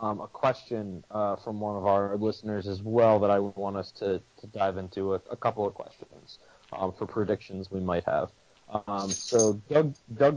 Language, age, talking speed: English, 30-49, 195 wpm